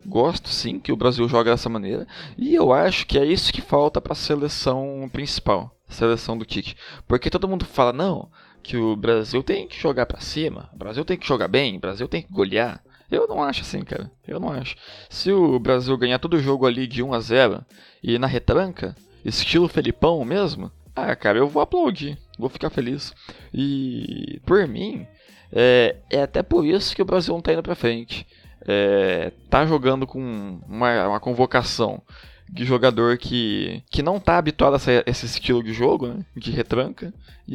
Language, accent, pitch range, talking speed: Portuguese, Brazilian, 115-155 Hz, 190 wpm